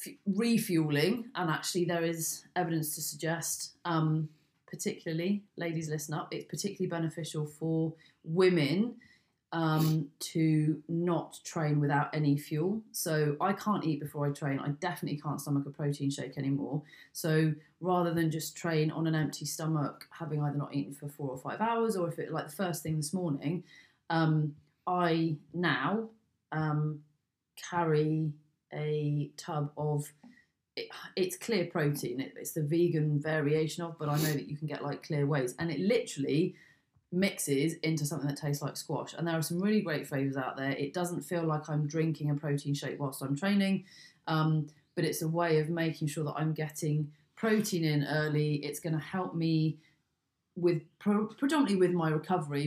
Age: 30-49